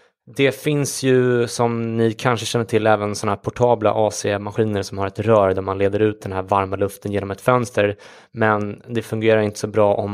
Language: English